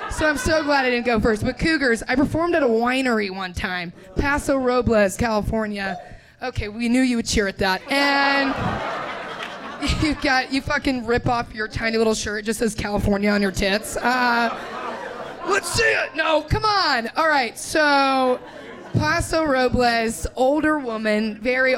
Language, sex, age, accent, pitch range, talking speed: English, female, 20-39, American, 215-280 Hz, 170 wpm